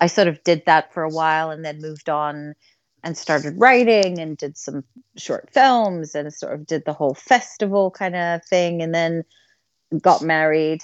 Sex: female